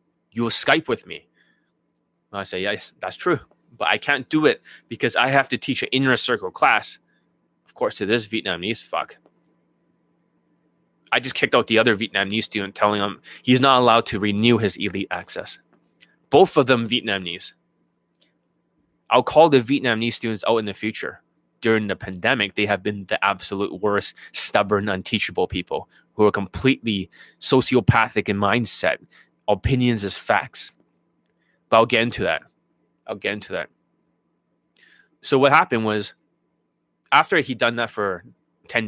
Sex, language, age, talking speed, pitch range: male, English, 20-39, 155 wpm, 105-130 Hz